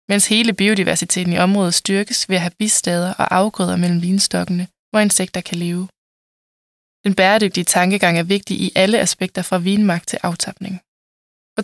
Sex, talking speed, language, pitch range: female, 160 wpm, Danish, 175-205 Hz